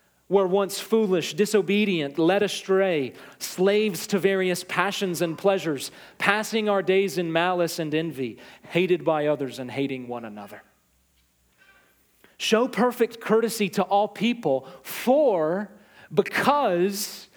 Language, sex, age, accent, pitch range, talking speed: English, male, 40-59, American, 165-230 Hz, 115 wpm